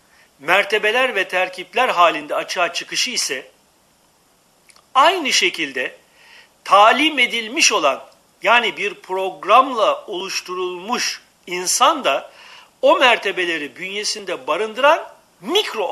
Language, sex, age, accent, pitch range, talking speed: Turkish, male, 60-79, native, 185-295 Hz, 85 wpm